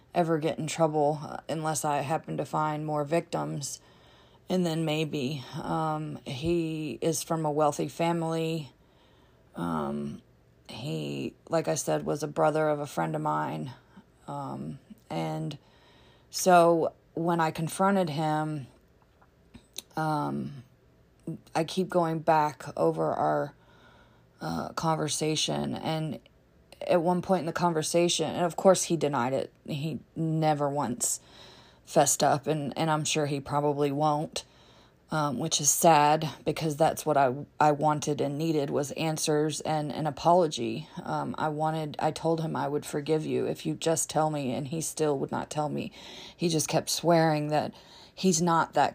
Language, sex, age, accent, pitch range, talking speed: English, female, 30-49, American, 145-160 Hz, 150 wpm